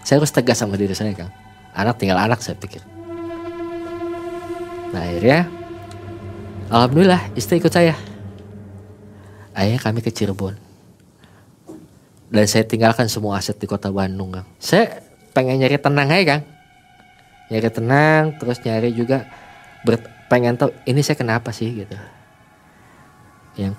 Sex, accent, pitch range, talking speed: male, native, 100-140 Hz, 130 wpm